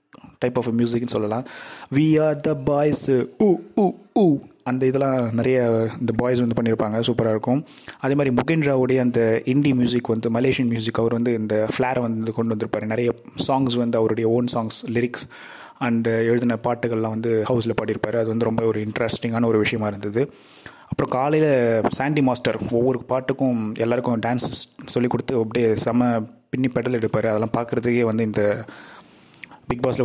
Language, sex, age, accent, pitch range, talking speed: Tamil, male, 20-39, native, 115-130 Hz, 150 wpm